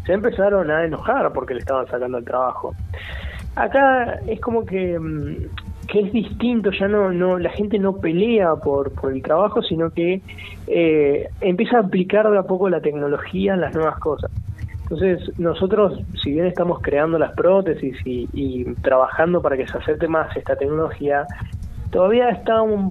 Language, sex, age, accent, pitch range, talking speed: Spanish, male, 20-39, Argentinian, 135-180 Hz, 170 wpm